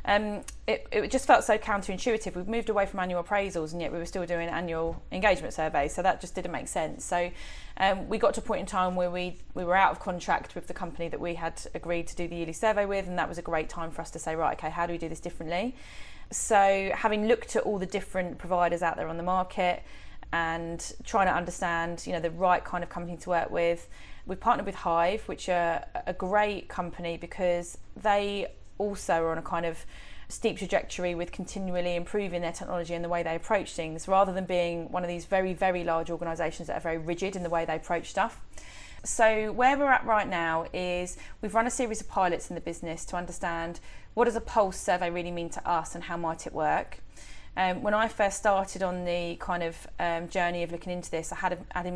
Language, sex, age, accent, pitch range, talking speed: English, female, 20-39, British, 170-195 Hz, 235 wpm